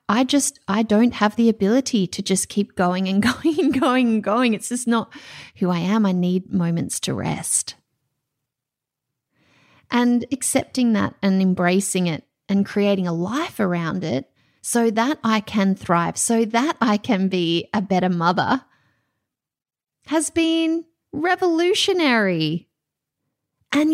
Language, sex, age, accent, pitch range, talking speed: English, female, 30-49, Australian, 180-255 Hz, 145 wpm